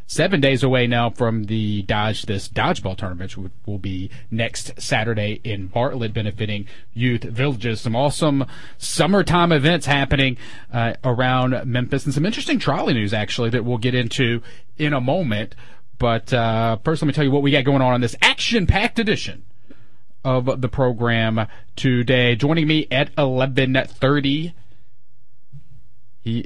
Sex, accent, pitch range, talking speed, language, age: male, American, 110-130 Hz, 150 wpm, English, 30-49